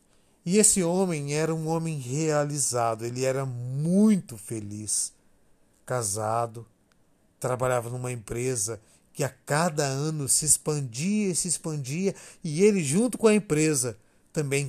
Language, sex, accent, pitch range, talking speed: Portuguese, male, Brazilian, 120-165 Hz, 125 wpm